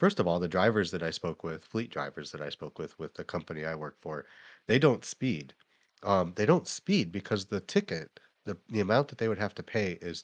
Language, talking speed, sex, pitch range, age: English, 240 wpm, male, 85-115 Hz, 30-49